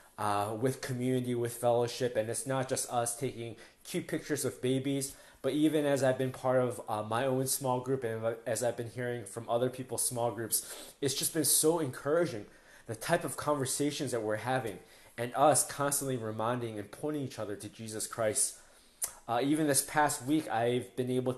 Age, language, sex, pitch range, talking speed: 20-39, English, male, 115-150 Hz, 190 wpm